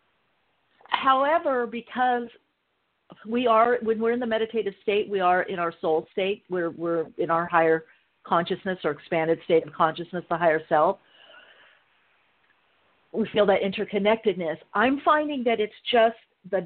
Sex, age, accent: female, 50-69, American